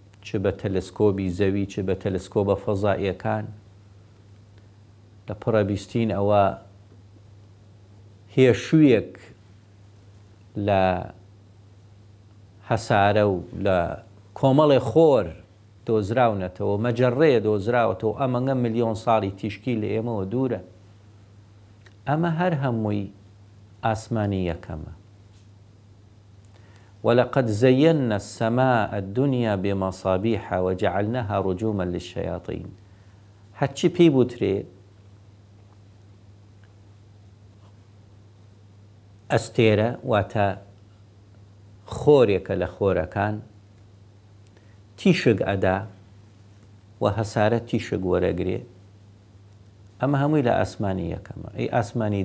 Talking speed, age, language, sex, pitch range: 75 wpm, 50-69, English, male, 100-110 Hz